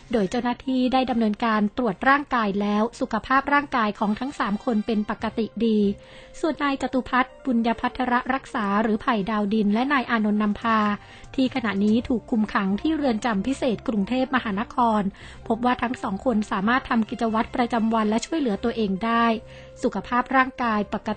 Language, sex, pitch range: Thai, female, 215-255 Hz